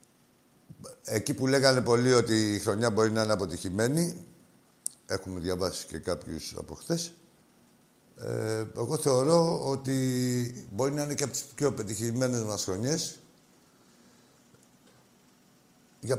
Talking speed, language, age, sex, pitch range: 115 wpm, Greek, 60-79, male, 95-125 Hz